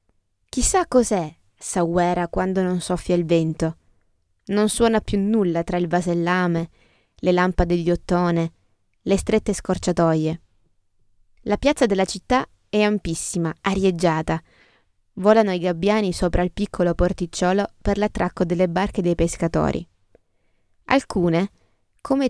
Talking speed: 120 wpm